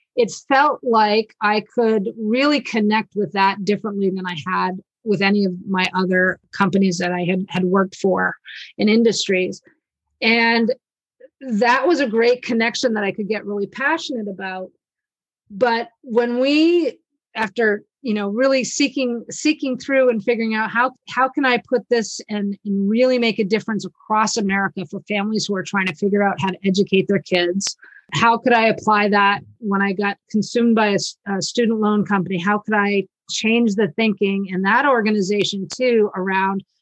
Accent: American